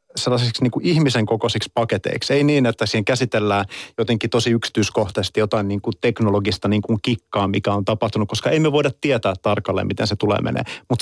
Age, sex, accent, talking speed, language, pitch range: 30-49, male, native, 175 wpm, Finnish, 115-145 Hz